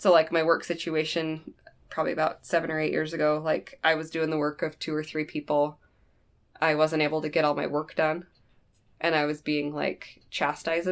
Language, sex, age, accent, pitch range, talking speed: English, female, 20-39, American, 150-170 Hz, 210 wpm